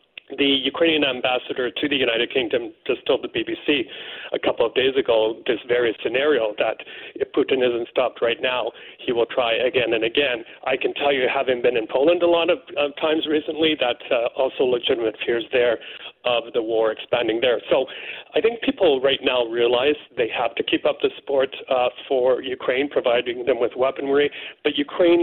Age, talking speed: 40-59, 190 wpm